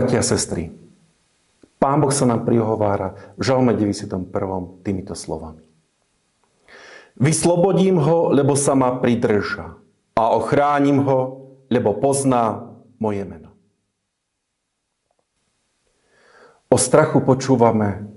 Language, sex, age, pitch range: Slovak, male, 50-69, 110-145 Hz